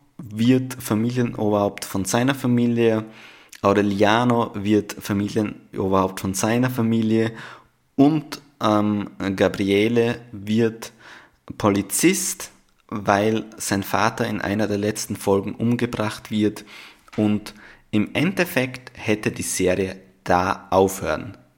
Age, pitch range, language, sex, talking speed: 20-39, 100-115 Hz, German, male, 95 wpm